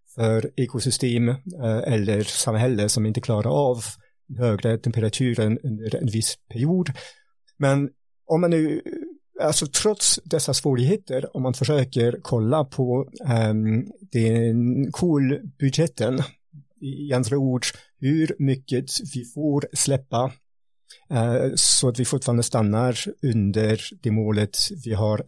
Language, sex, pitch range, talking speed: Swedish, male, 120-155 Hz, 110 wpm